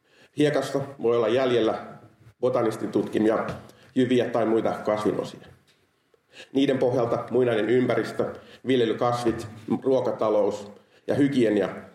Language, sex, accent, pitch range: Finnish, male, native, 110-125 Hz